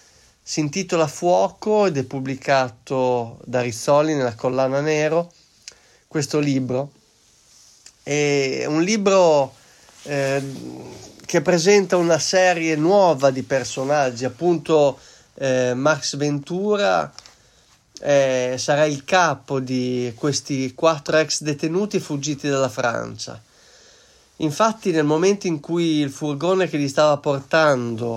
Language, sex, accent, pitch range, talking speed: Italian, male, native, 130-160 Hz, 110 wpm